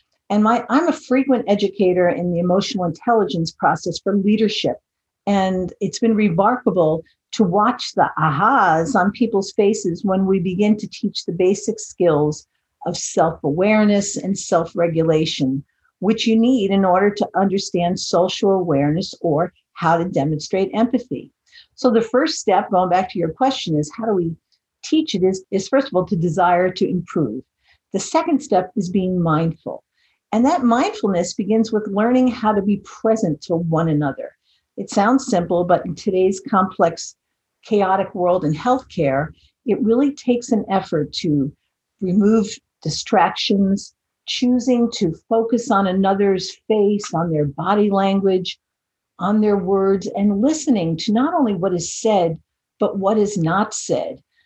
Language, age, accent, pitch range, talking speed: English, 50-69, American, 175-220 Hz, 150 wpm